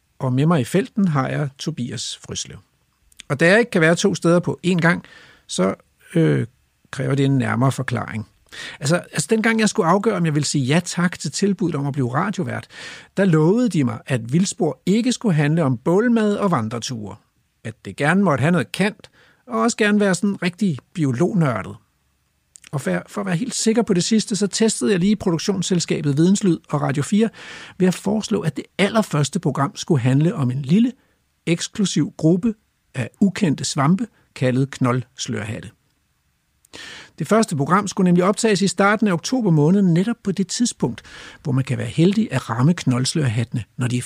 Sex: male